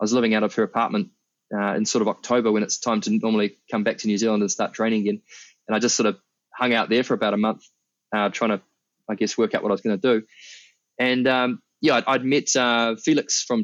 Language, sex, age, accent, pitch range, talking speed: English, male, 20-39, Australian, 110-120 Hz, 265 wpm